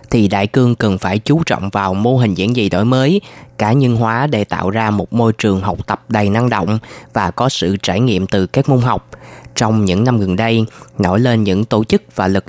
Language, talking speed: Vietnamese, 235 wpm